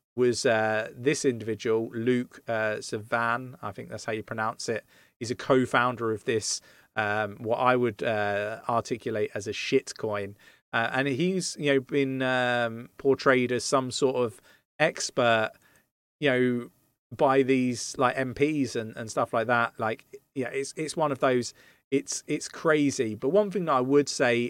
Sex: male